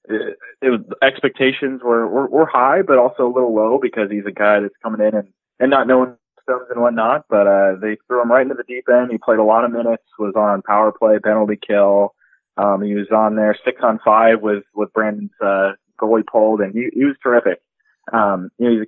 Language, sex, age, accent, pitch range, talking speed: English, male, 20-39, American, 100-115 Hz, 230 wpm